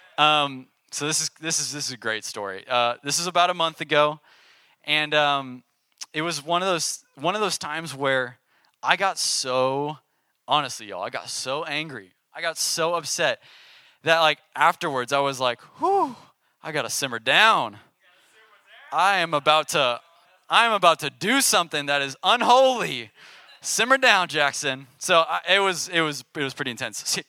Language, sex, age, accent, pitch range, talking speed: English, male, 20-39, American, 120-155 Hz, 175 wpm